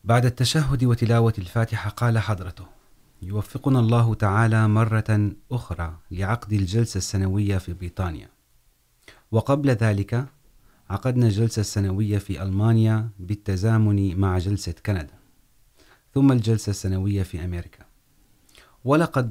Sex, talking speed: male, 105 wpm